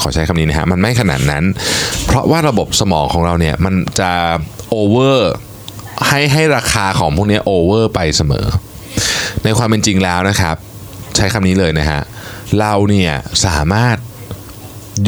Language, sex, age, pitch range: Thai, male, 20-39, 85-115 Hz